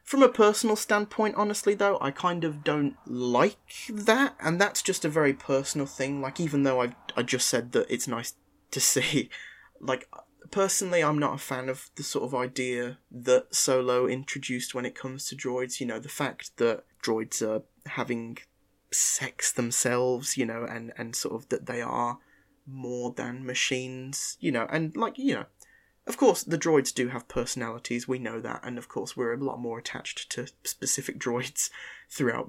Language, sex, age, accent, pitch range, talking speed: English, male, 30-49, British, 125-155 Hz, 185 wpm